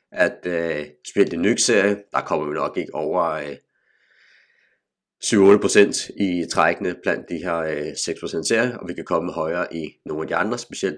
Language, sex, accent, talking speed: Danish, male, native, 165 wpm